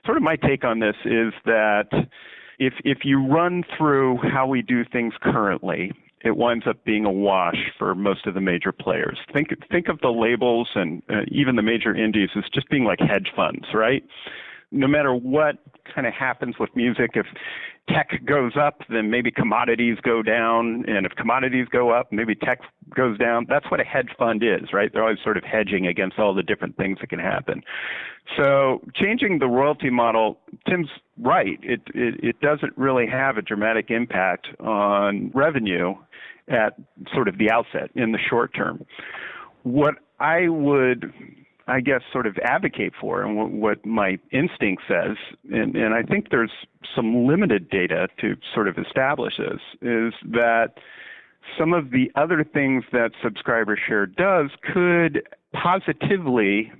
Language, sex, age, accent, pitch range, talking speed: English, male, 50-69, American, 110-135 Hz, 170 wpm